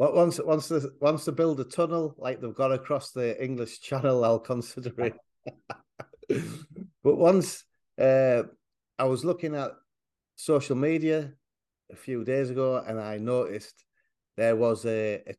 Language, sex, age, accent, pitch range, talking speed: English, male, 40-59, British, 120-150 Hz, 145 wpm